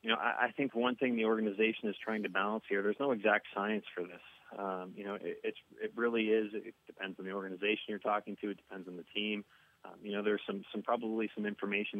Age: 30-49